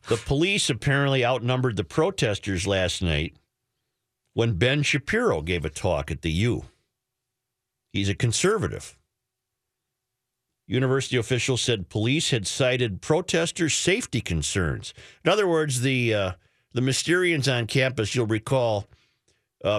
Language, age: English, 50-69